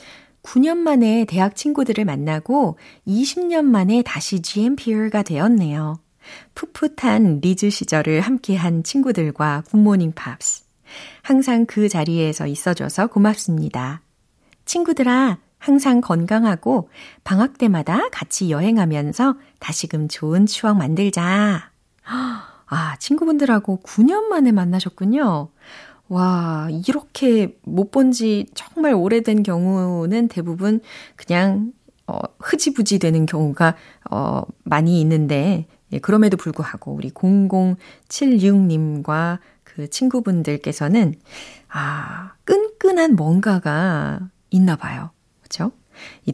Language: Korean